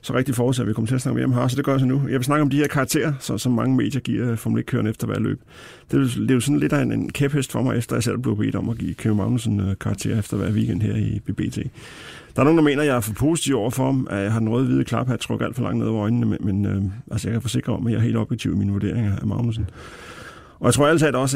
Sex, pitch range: male, 110-130 Hz